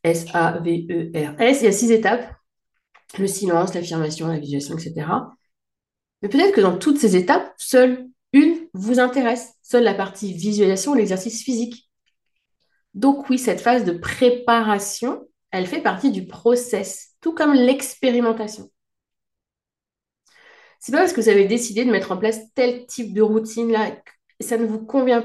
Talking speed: 155 wpm